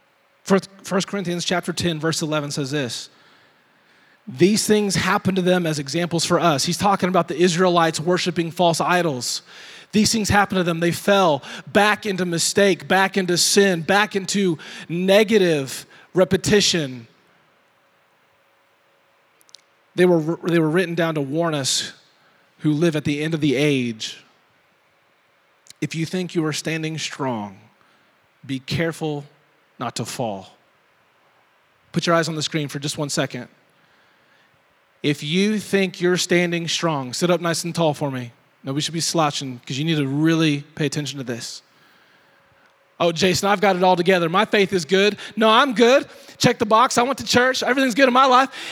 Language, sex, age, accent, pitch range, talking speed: English, male, 30-49, American, 150-195 Hz, 165 wpm